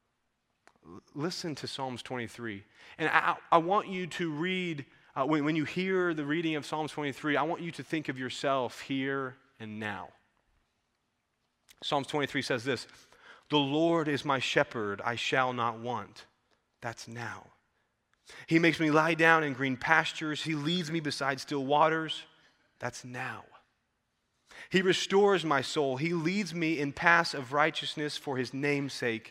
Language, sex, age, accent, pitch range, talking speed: English, male, 30-49, American, 120-155 Hz, 155 wpm